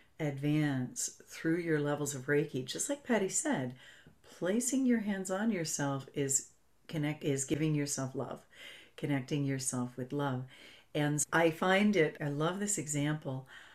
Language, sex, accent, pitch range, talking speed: English, female, American, 135-175 Hz, 145 wpm